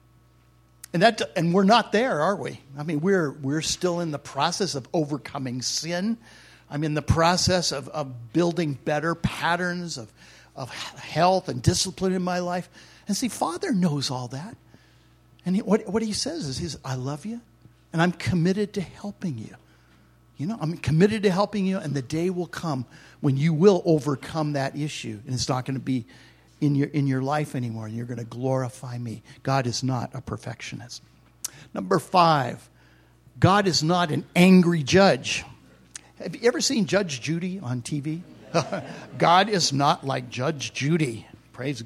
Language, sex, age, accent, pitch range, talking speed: English, male, 60-79, American, 130-180 Hz, 180 wpm